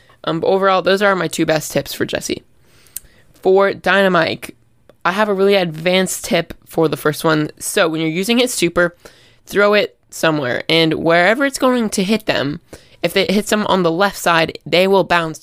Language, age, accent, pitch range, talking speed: English, 20-39, American, 155-190 Hz, 190 wpm